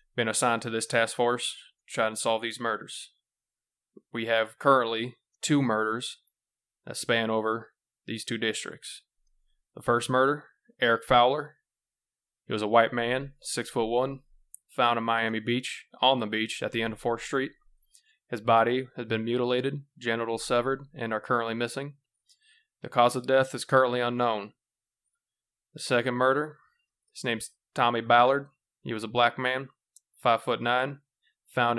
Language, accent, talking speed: English, American, 155 wpm